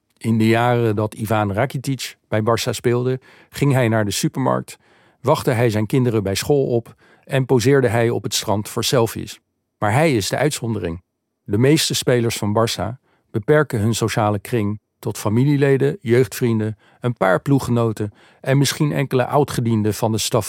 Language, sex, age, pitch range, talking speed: Dutch, male, 50-69, 105-135 Hz, 165 wpm